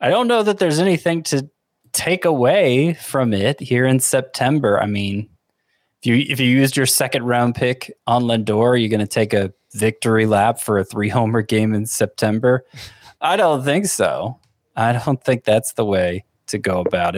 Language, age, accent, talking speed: English, 20-39, American, 190 wpm